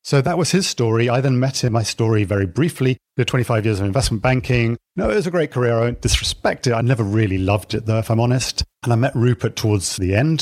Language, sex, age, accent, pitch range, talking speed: English, male, 40-59, British, 100-130 Hz, 260 wpm